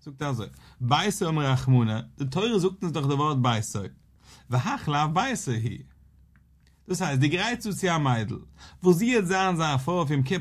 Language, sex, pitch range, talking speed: English, male, 125-175 Hz, 135 wpm